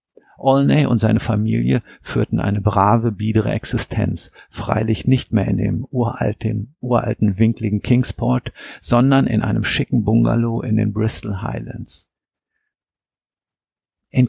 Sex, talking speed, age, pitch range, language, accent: male, 120 wpm, 50-69, 105-120 Hz, German, German